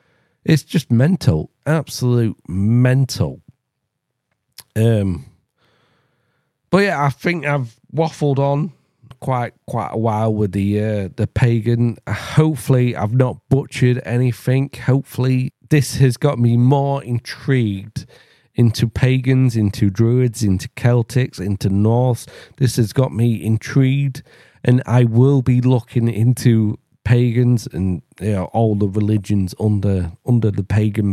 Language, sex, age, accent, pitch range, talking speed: English, male, 40-59, British, 110-130 Hz, 125 wpm